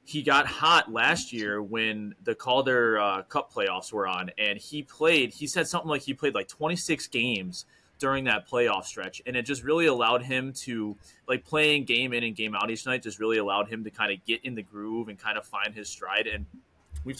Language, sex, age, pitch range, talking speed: English, male, 20-39, 110-150 Hz, 225 wpm